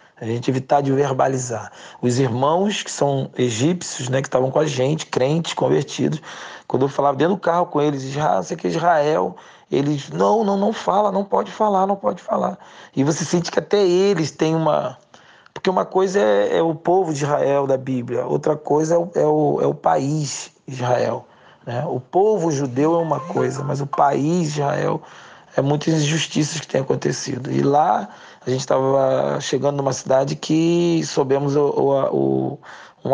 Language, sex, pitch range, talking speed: Portuguese, male, 130-155 Hz, 190 wpm